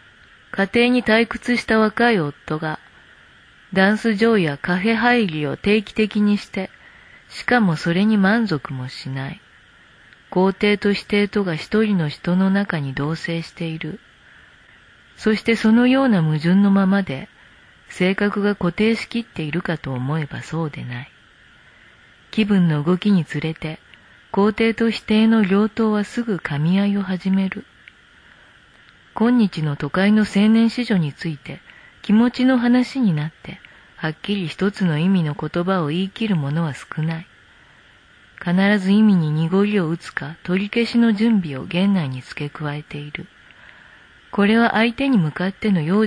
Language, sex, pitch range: Japanese, female, 160-215 Hz